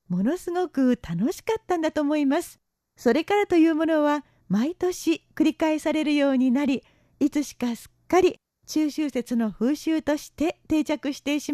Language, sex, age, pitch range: Japanese, female, 40-59, 275-330 Hz